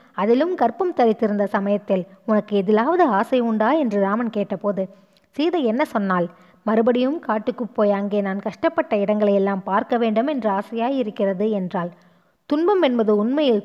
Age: 20-39